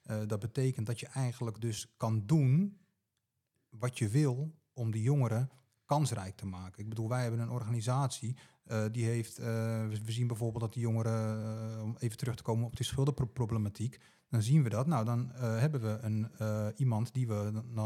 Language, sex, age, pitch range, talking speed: Dutch, male, 30-49, 110-130 Hz, 190 wpm